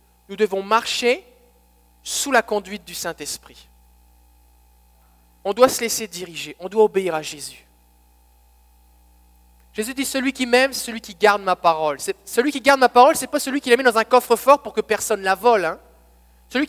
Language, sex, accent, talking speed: French, male, French, 190 wpm